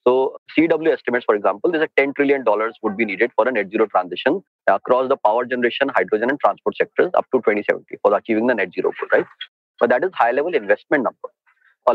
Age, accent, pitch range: 30-49, Indian, 130-185 Hz